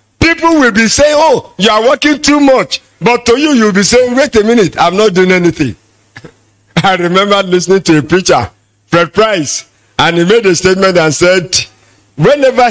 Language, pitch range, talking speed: English, 145-245 Hz, 185 wpm